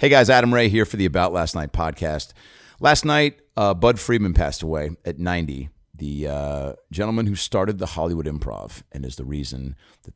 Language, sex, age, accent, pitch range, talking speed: English, male, 40-59, American, 80-100 Hz, 195 wpm